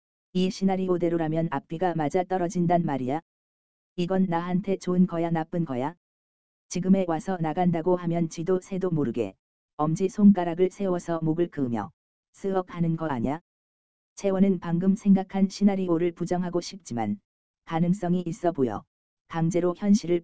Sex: female